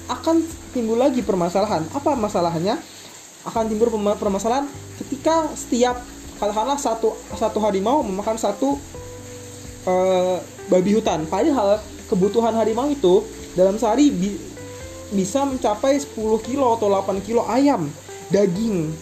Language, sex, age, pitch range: Indonesian, male, 20-39, 180-245 Hz